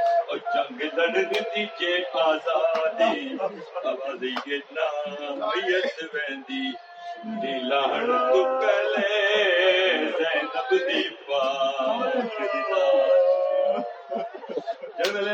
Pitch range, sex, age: 165-230 Hz, male, 60-79